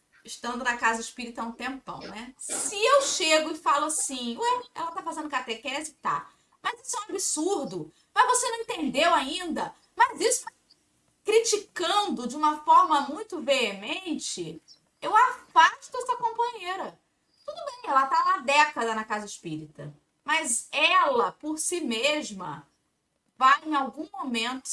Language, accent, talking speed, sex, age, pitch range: Portuguese, Brazilian, 145 wpm, female, 20-39, 260-410 Hz